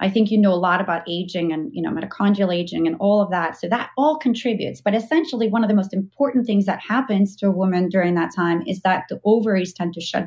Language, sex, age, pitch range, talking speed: English, female, 30-49, 175-220 Hz, 255 wpm